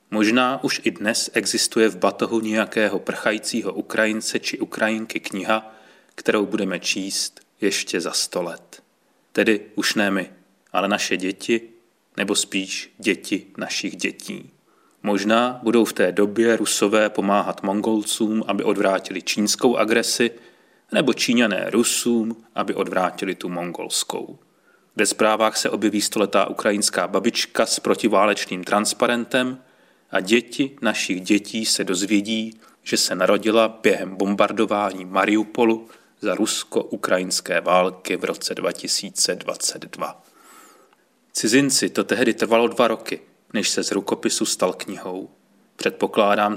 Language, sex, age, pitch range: Czech, male, 30-49, 100-115 Hz